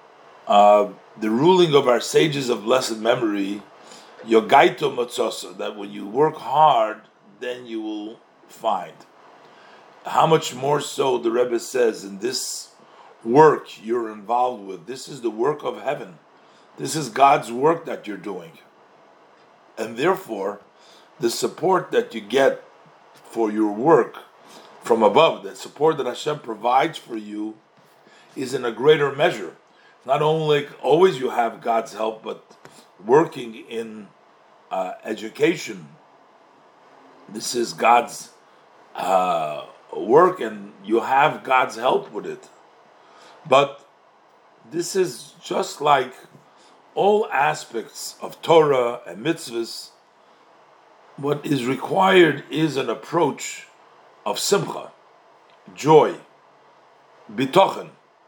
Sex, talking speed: male, 115 wpm